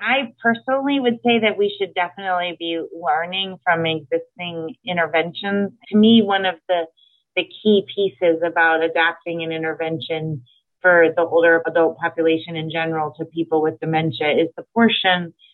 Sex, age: female, 30-49